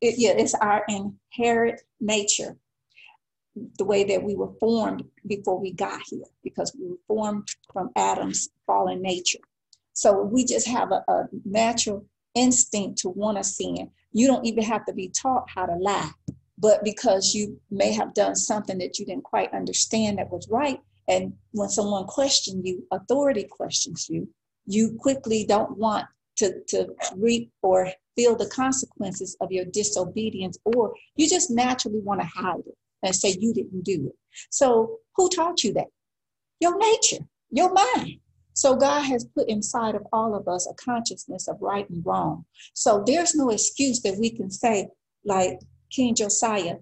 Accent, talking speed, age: American, 170 wpm, 40-59